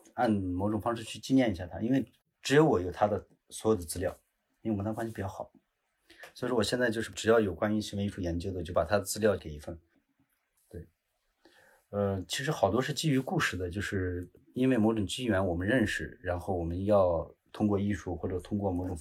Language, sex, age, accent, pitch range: Chinese, male, 30-49, native, 90-110 Hz